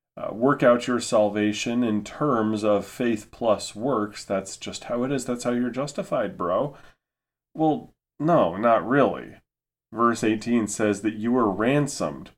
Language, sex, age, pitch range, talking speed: English, male, 30-49, 100-125 Hz, 155 wpm